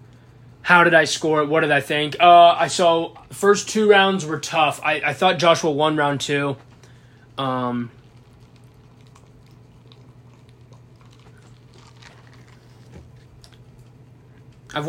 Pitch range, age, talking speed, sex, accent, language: 125-160 Hz, 20-39, 100 wpm, male, American, English